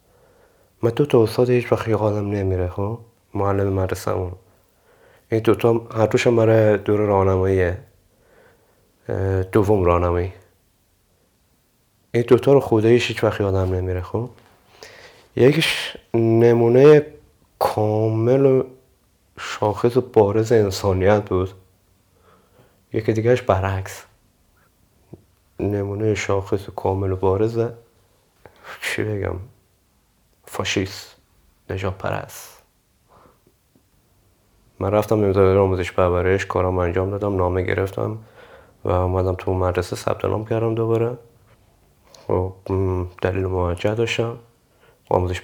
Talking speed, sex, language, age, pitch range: 100 wpm, male, Persian, 30-49, 95-115 Hz